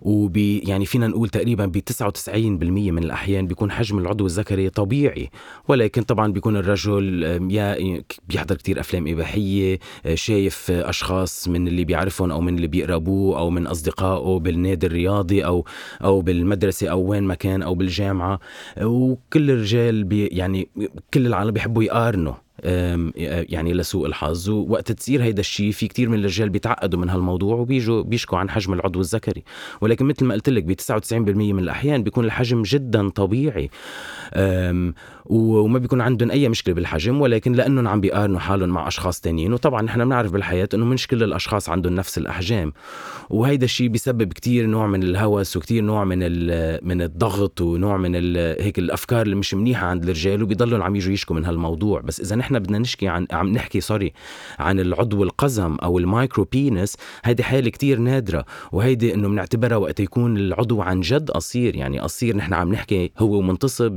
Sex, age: male, 30-49